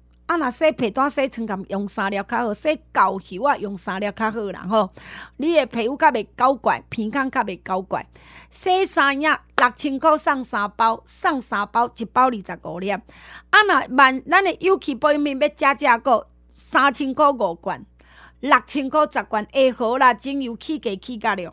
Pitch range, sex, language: 225-310 Hz, female, Chinese